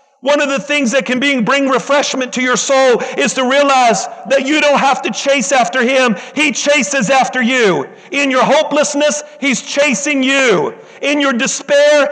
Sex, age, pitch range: male, 50-69, 255-285 Hz